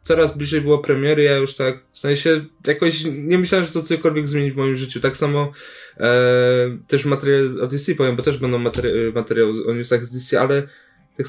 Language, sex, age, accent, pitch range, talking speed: Polish, male, 10-29, native, 125-150 Hz, 205 wpm